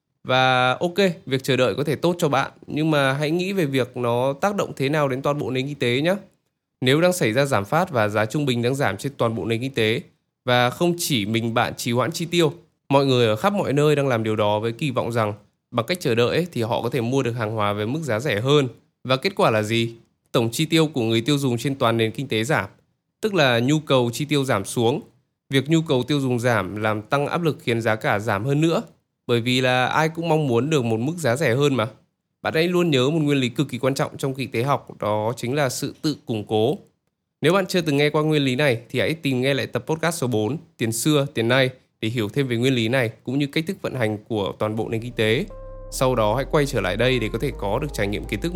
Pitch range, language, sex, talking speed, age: 115-150 Hz, Vietnamese, male, 275 wpm, 20-39